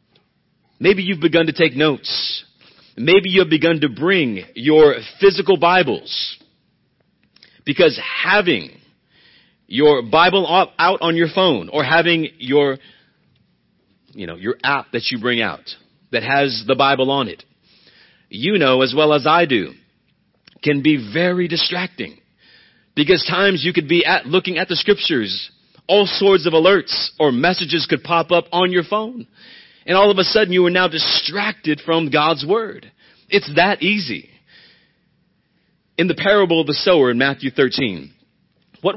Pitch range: 145-185 Hz